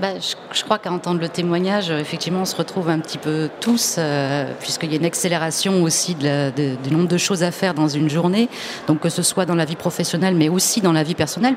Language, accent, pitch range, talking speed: French, French, 150-185 Hz, 240 wpm